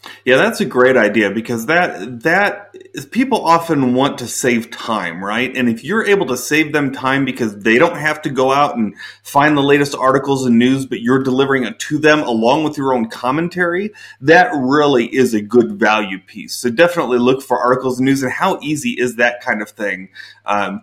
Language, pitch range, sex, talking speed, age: English, 120-155 Hz, male, 205 wpm, 30-49